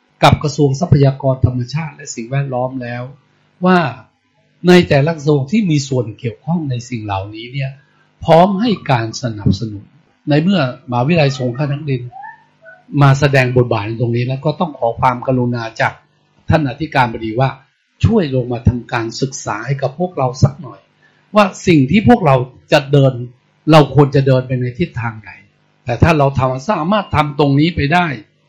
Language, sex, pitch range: English, male, 125-165 Hz